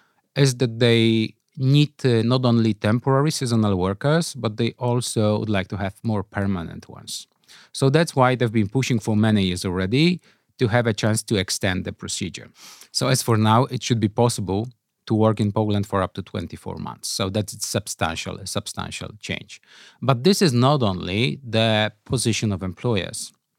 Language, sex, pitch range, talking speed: Polish, male, 100-125 Hz, 175 wpm